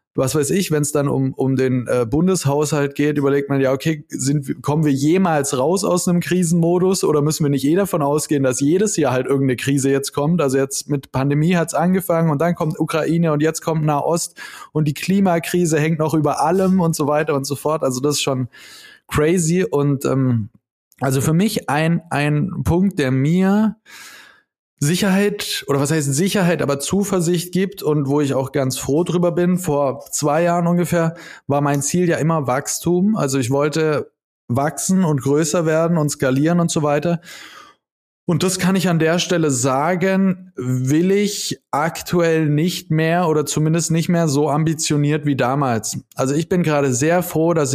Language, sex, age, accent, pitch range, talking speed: German, male, 20-39, German, 140-175 Hz, 185 wpm